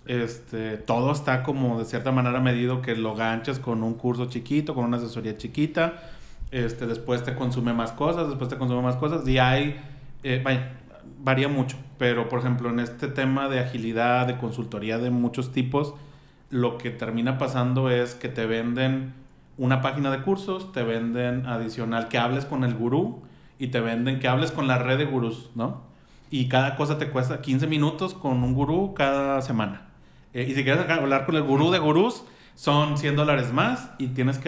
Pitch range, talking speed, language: 120-145 Hz, 185 wpm, Spanish